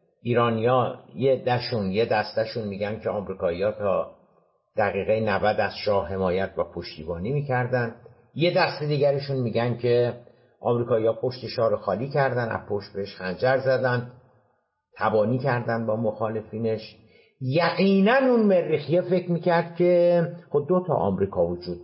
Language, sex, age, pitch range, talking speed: Persian, male, 60-79, 115-155 Hz, 125 wpm